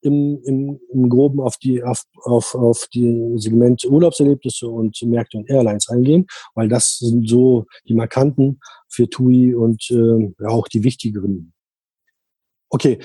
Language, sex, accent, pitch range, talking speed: German, male, German, 125-145 Hz, 145 wpm